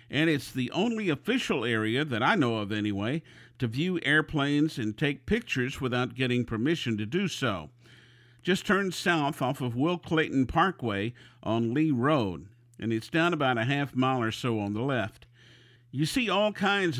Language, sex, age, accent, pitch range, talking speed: English, male, 50-69, American, 120-155 Hz, 175 wpm